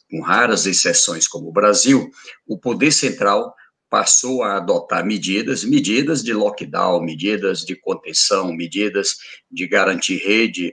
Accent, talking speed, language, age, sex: Brazilian, 130 wpm, Portuguese, 60-79, male